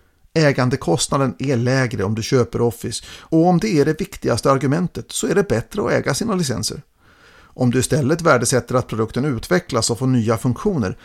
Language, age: Swedish, 50-69